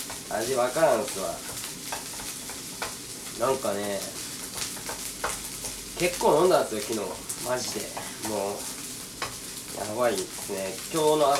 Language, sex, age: Japanese, male, 20-39